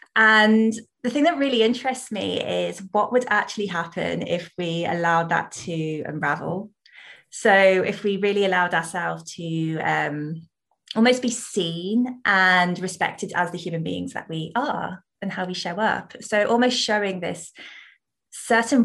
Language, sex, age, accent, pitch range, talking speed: English, female, 20-39, British, 170-215 Hz, 155 wpm